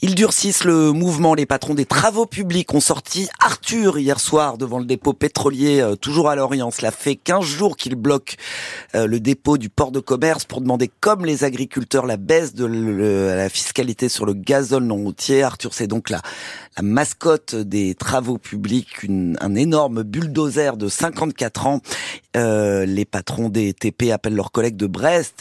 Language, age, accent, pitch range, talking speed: French, 30-49, French, 115-150 Hz, 175 wpm